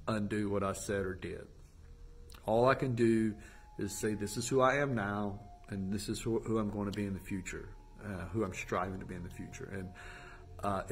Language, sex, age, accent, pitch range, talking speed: English, male, 40-59, American, 100-125 Hz, 225 wpm